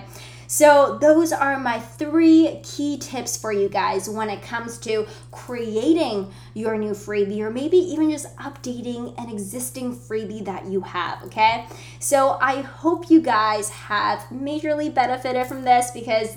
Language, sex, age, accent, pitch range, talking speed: English, female, 20-39, American, 200-245 Hz, 150 wpm